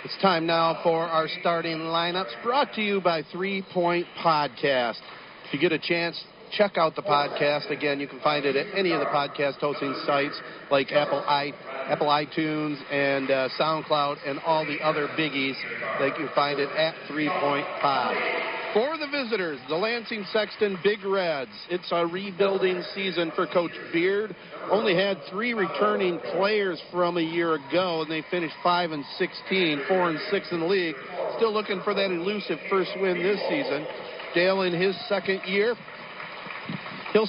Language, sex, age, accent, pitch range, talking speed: English, male, 50-69, American, 155-205 Hz, 165 wpm